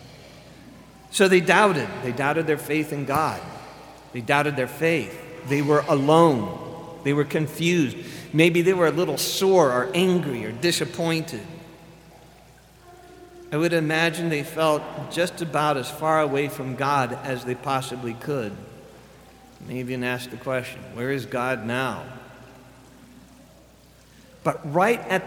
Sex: male